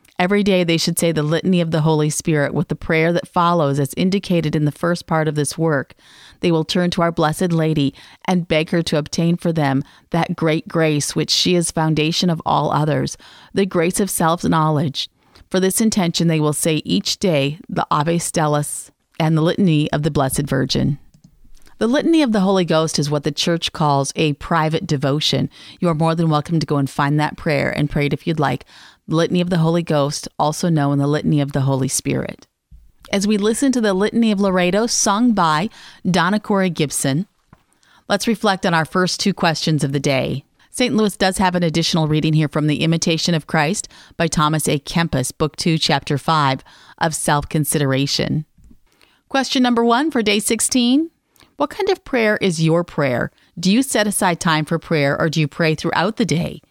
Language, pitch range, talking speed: English, 150-190 Hz, 200 wpm